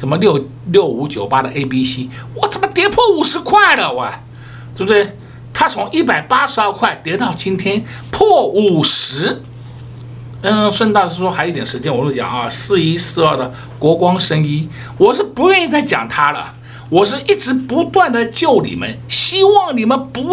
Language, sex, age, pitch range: Chinese, male, 60-79, 125-205 Hz